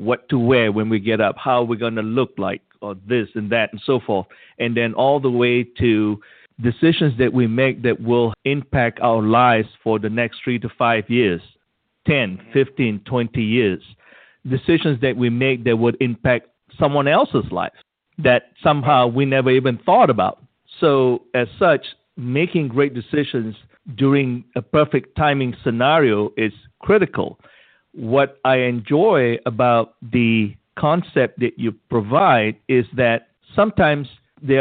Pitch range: 115-135 Hz